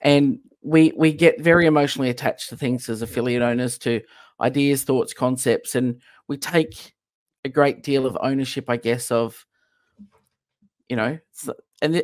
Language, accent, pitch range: English, Australian, 125-150 Hz